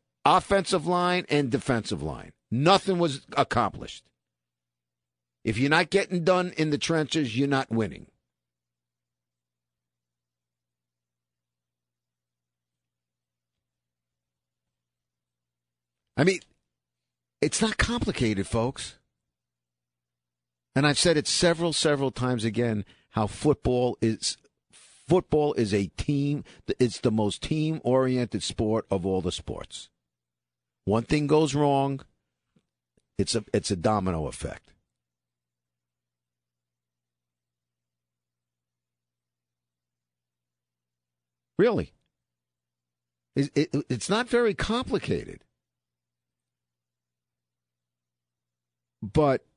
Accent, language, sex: American, English, male